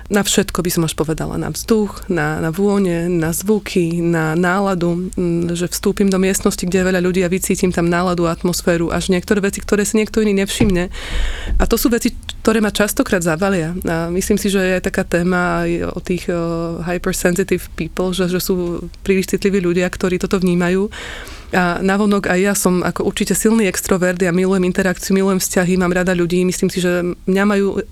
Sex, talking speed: female, 190 wpm